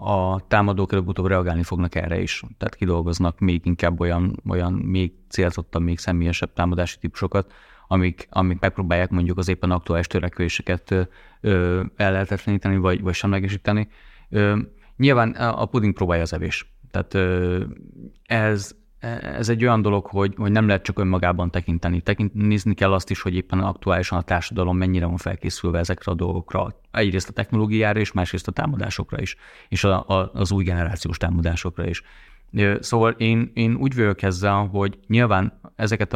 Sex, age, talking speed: male, 30-49, 150 wpm